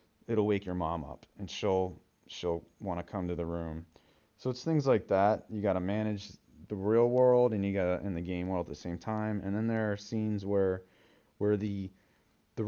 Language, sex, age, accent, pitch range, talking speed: English, male, 30-49, American, 90-110 Hz, 220 wpm